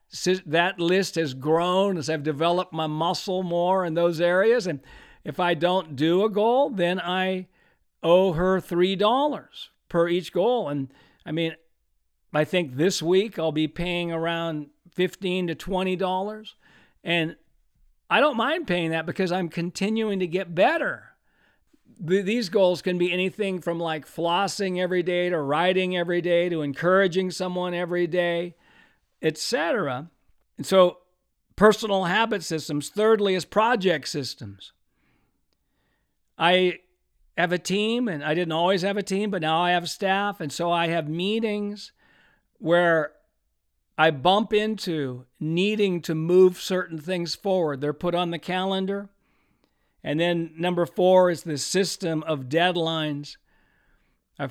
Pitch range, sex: 165-190 Hz, male